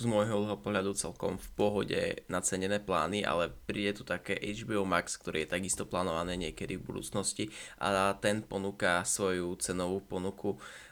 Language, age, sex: Czech, 20-39, male